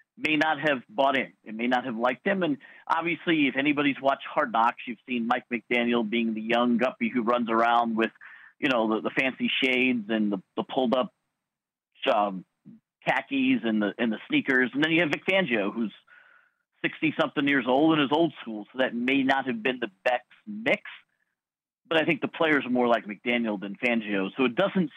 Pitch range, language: 115-150 Hz, English